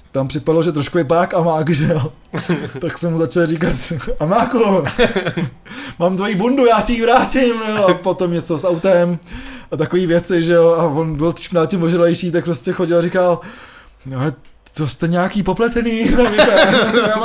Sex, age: male, 20-39